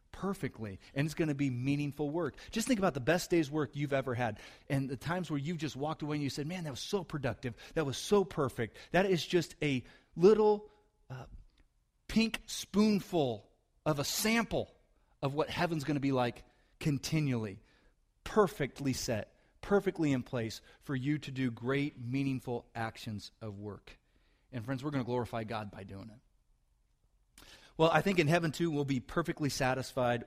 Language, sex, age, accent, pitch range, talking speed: English, male, 30-49, American, 120-155 Hz, 180 wpm